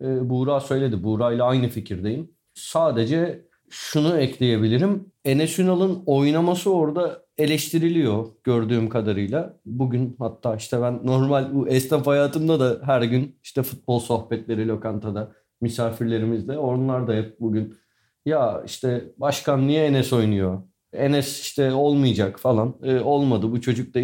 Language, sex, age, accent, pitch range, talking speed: Turkish, male, 40-59, native, 120-155 Hz, 120 wpm